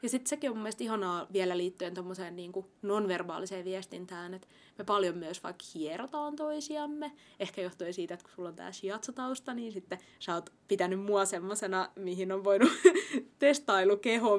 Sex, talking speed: female, 165 wpm